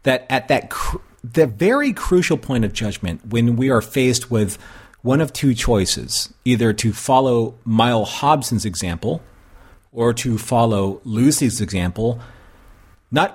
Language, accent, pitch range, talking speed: English, American, 100-125 Hz, 140 wpm